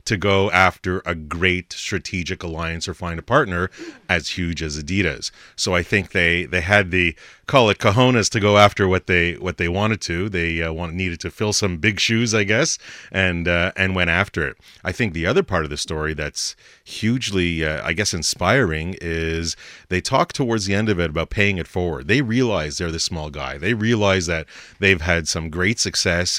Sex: male